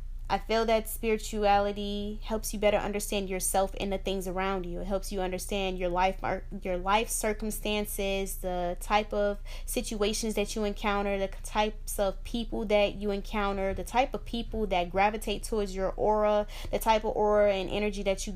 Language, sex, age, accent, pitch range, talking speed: English, female, 10-29, American, 185-210 Hz, 175 wpm